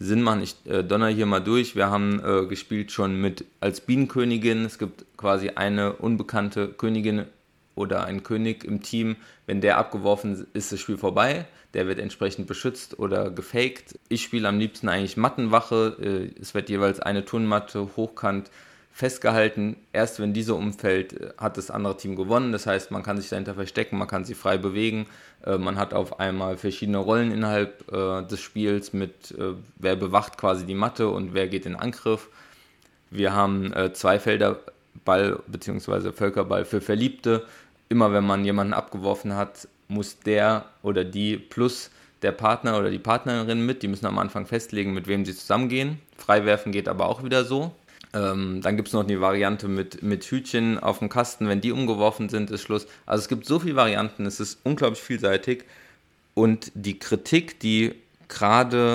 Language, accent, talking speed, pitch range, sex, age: German, German, 170 wpm, 100-115 Hz, male, 20-39